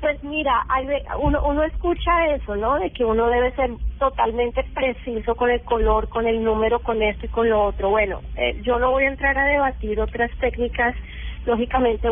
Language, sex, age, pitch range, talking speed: English, female, 30-49, 215-255 Hz, 195 wpm